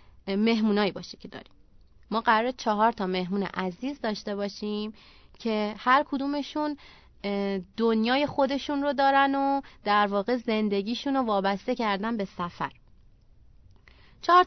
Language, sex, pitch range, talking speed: Persian, female, 200-275 Hz, 120 wpm